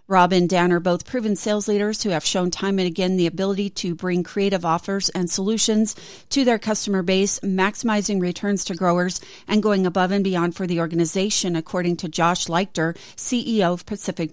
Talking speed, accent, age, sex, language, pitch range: 190 wpm, American, 40-59, female, English, 175-210 Hz